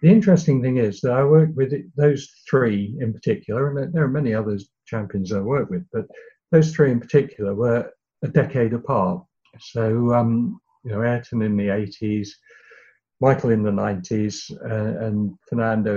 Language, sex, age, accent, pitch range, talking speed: English, male, 60-79, British, 105-135 Hz, 170 wpm